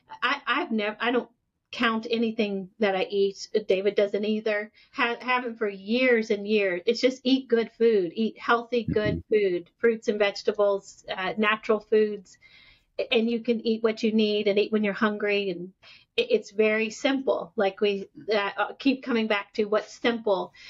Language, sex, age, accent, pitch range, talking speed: English, female, 40-59, American, 205-235 Hz, 175 wpm